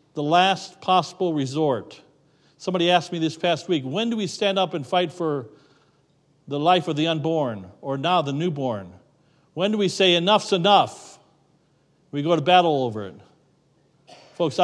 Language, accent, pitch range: English, American, 140-175 Hz